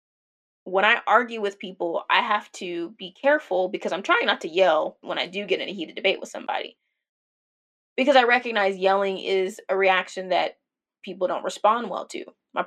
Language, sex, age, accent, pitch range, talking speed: English, female, 20-39, American, 190-250 Hz, 190 wpm